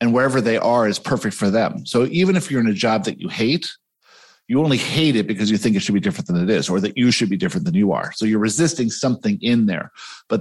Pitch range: 105-145 Hz